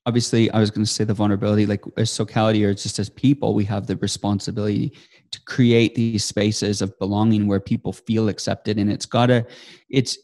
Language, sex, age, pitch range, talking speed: English, male, 30-49, 105-130 Hz, 200 wpm